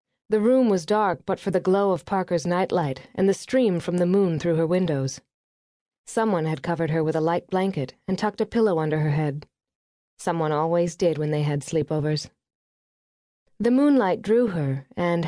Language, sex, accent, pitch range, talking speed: English, female, American, 155-210 Hz, 185 wpm